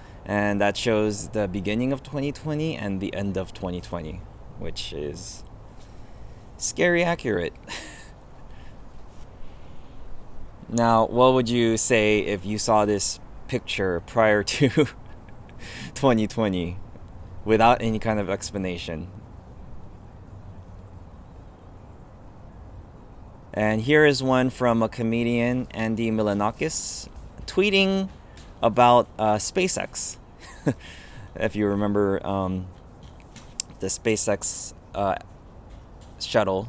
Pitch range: 90-110 Hz